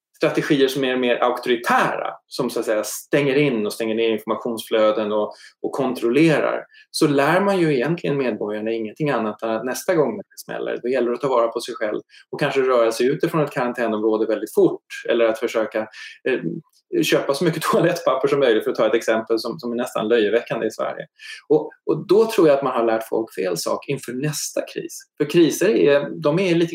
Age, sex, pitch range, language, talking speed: 20-39, male, 115-175 Hz, Swedish, 215 wpm